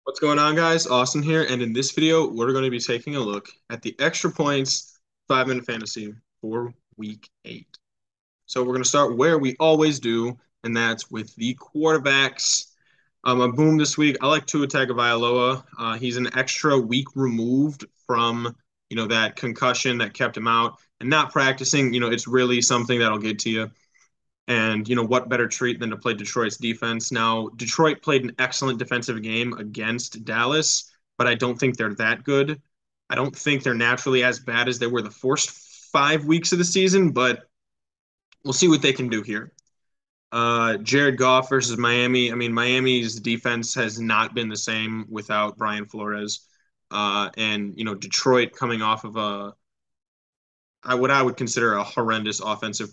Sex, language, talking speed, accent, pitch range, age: male, English, 185 wpm, American, 110-135 Hz, 10-29